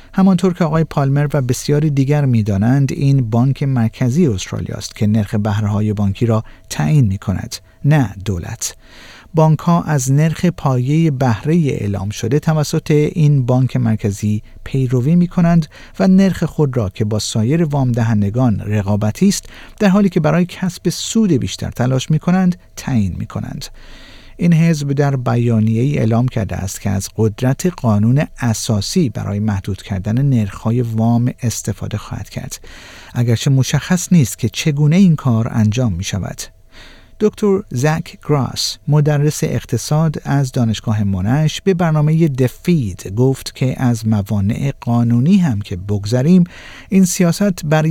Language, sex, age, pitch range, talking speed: Persian, male, 50-69, 110-155 Hz, 140 wpm